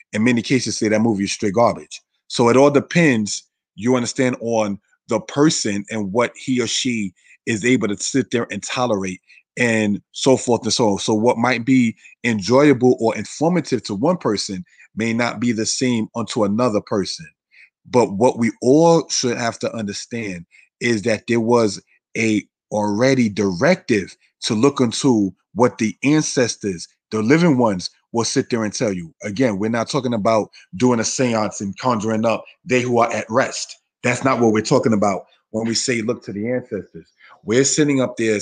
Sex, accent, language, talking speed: male, American, English, 185 wpm